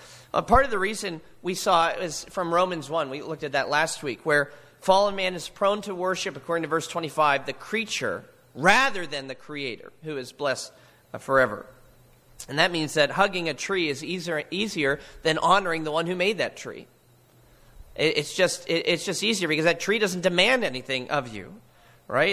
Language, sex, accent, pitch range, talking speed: English, male, American, 140-180 Hz, 195 wpm